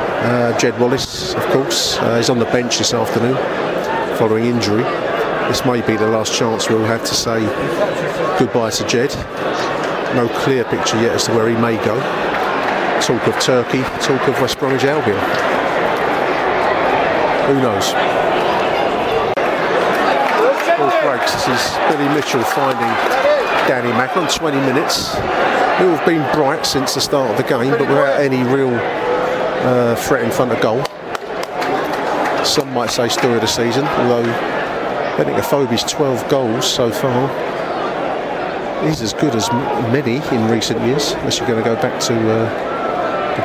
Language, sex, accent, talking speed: English, male, British, 150 wpm